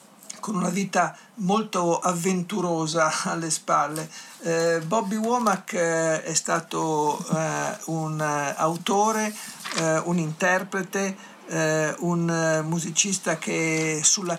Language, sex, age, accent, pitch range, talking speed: Italian, male, 60-79, native, 160-195 Hz, 100 wpm